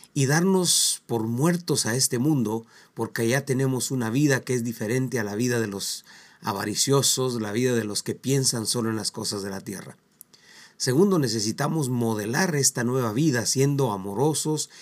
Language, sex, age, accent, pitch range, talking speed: Spanish, male, 40-59, Mexican, 115-140 Hz, 170 wpm